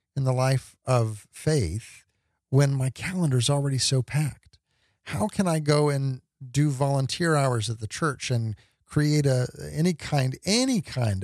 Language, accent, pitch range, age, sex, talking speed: English, American, 115-150 Hz, 40-59, male, 160 wpm